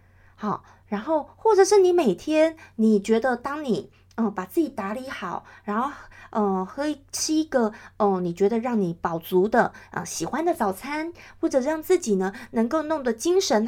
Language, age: Chinese, 30-49